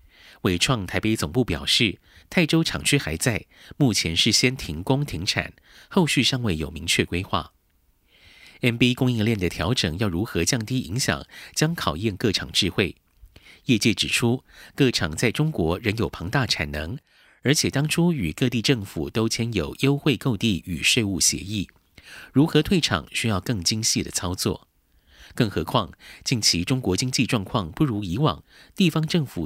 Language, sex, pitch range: Chinese, male, 85-135 Hz